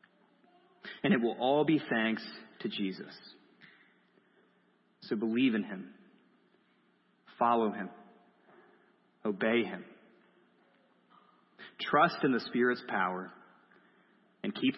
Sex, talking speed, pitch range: male, 95 wpm, 105-130 Hz